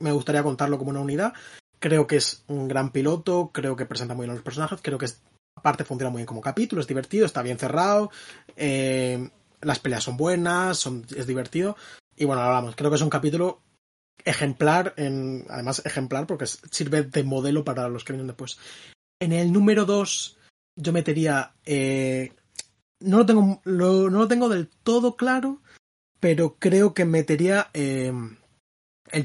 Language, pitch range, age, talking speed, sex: Spanish, 135-170 Hz, 20-39, 165 wpm, male